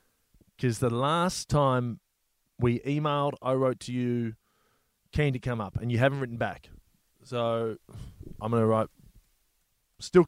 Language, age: English, 20-39